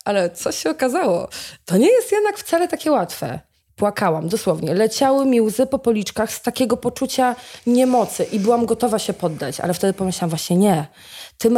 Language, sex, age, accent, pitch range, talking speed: Polish, female, 20-39, native, 180-230 Hz, 170 wpm